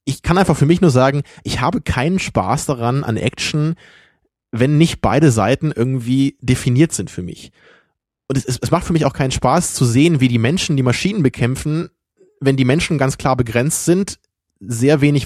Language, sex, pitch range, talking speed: German, male, 120-155 Hz, 195 wpm